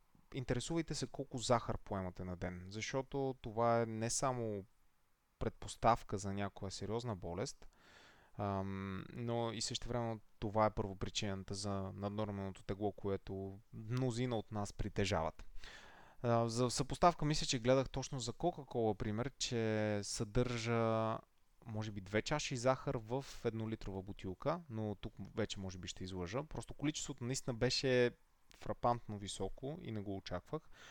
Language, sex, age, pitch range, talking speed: Bulgarian, male, 20-39, 100-130 Hz, 130 wpm